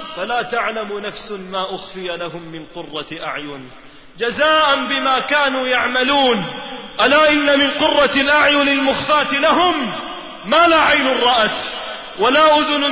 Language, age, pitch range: Arabic, 30-49, 245-300 Hz